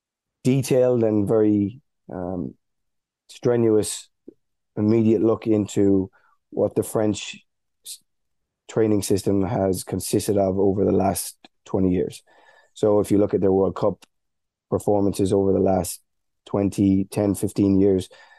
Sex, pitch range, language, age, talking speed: male, 95-110 Hz, English, 20-39, 120 wpm